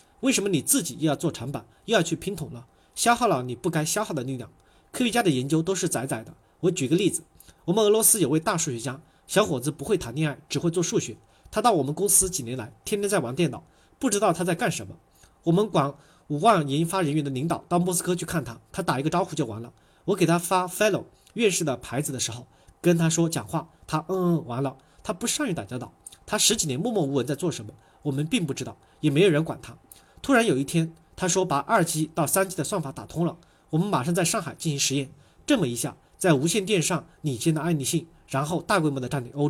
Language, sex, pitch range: Chinese, male, 140-185 Hz